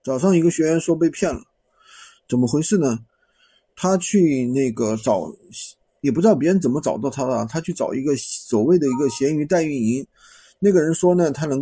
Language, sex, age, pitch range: Chinese, male, 20-39, 140-200 Hz